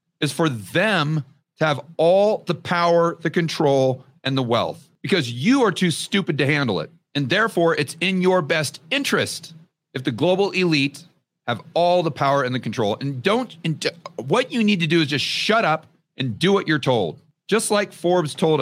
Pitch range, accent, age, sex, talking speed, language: 140-175 Hz, American, 40-59, male, 190 wpm, English